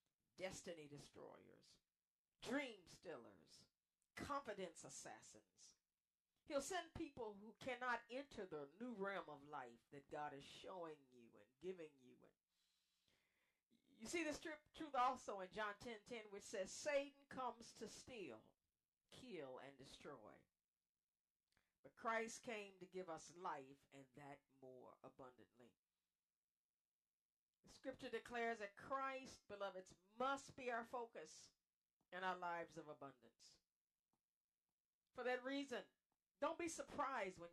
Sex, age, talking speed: female, 50-69, 125 wpm